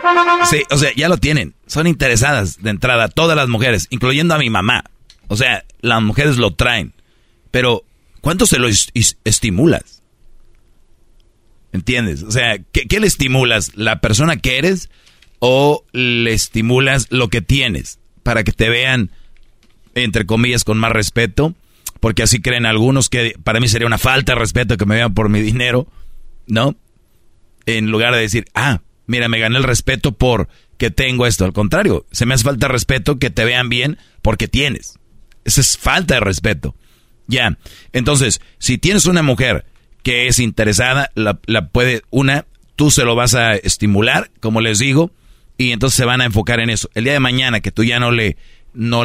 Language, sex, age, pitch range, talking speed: Spanish, male, 40-59, 110-130 Hz, 175 wpm